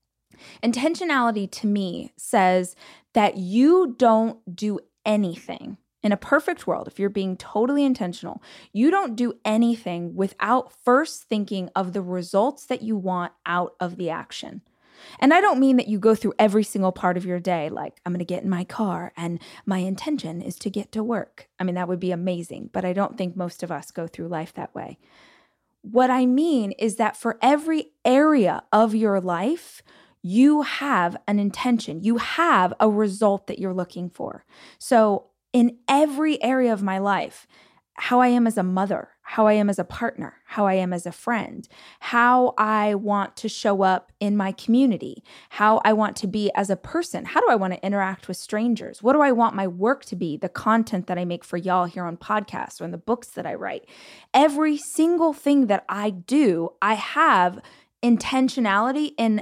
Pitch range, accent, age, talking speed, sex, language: 185-245 Hz, American, 20-39, 195 wpm, female, English